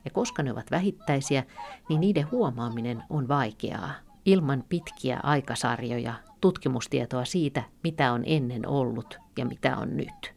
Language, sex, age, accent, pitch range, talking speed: Finnish, female, 50-69, native, 125-160 Hz, 135 wpm